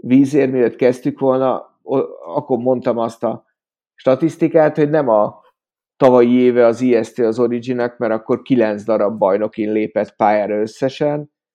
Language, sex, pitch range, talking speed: Hungarian, male, 115-140 Hz, 130 wpm